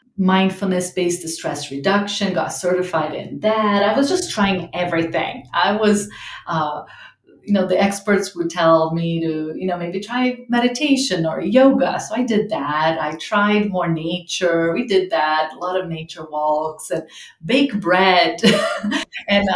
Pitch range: 165-205 Hz